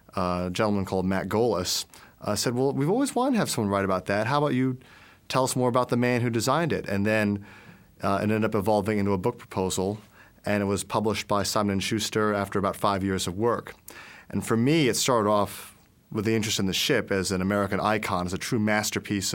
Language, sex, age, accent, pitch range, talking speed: English, male, 30-49, American, 95-115 Hz, 235 wpm